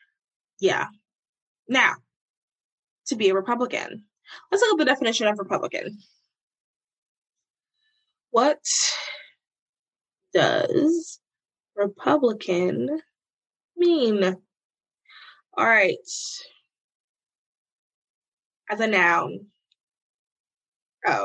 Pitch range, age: 195-245 Hz, 20-39